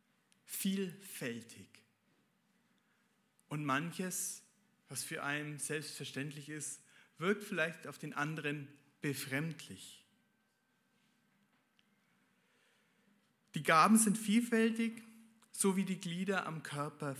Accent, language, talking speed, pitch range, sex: German, German, 85 wpm, 155-220 Hz, male